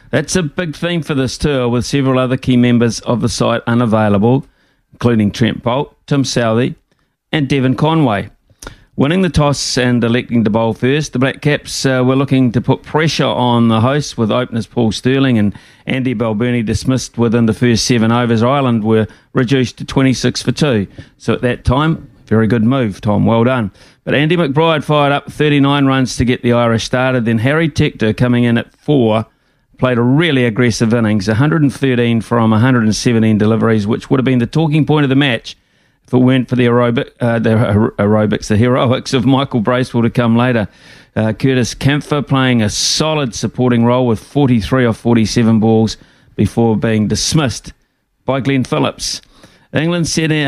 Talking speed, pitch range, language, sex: 180 wpm, 115-135 Hz, English, male